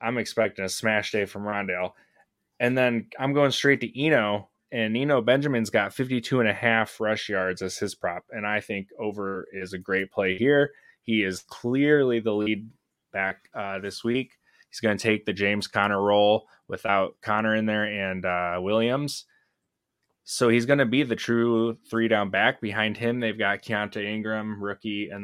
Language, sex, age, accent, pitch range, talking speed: English, male, 20-39, American, 95-115 Hz, 185 wpm